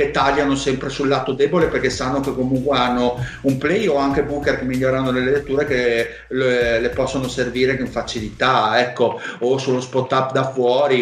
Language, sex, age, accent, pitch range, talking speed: Italian, male, 40-59, native, 120-140 Hz, 185 wpm